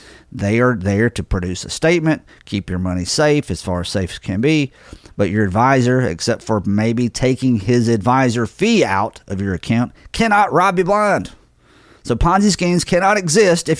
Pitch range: 100-155 Hz